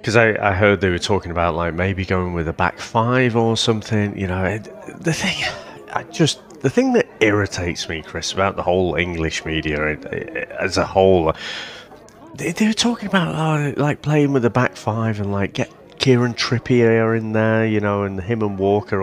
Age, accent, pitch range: 30-49, British, 95-140 Hz